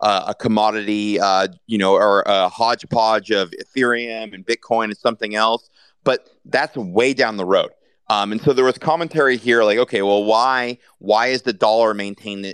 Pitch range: 100-125 Hz